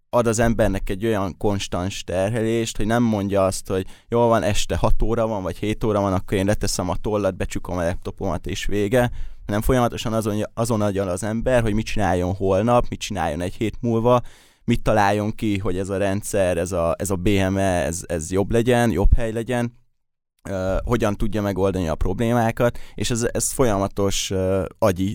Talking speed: 185 wpm